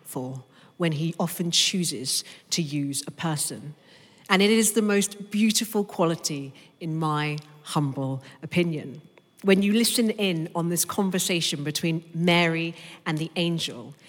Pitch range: 155-195 Hz